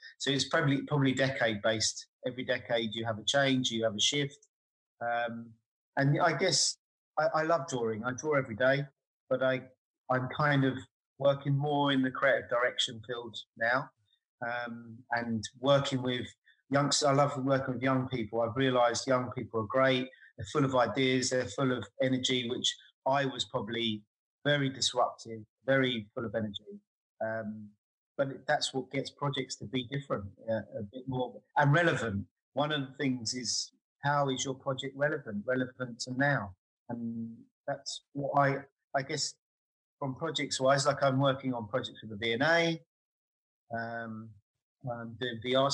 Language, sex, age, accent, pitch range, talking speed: English, male, 30-49, British, 115-140 Hz, 160 wpm